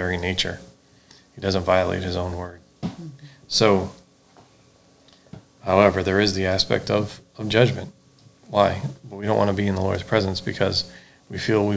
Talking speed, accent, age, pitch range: 160 wpm, American, 40-59, 90-110 Hz